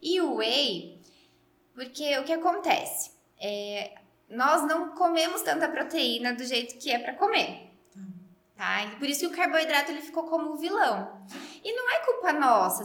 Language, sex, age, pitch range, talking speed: Portuguese, female, 10-29, 220-315 Hz, 170 wpm